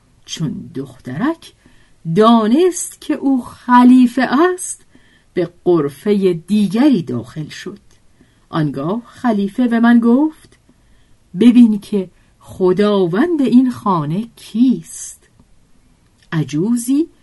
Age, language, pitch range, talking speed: 50-69, Persian, 155-245 Hz, 85 wpm